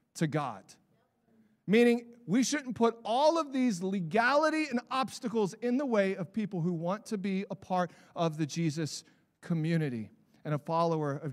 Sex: male